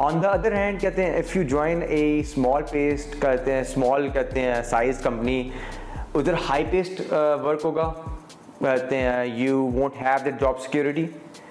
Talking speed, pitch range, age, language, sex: 130 wpm, 130-150 Hz, 30-49, Urdu, male